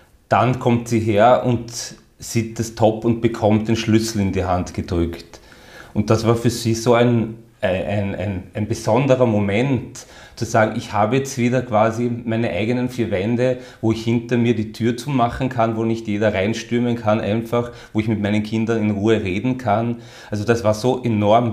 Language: German